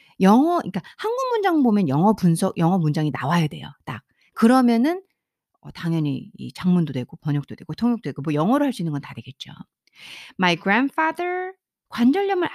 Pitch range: 180-280 Hz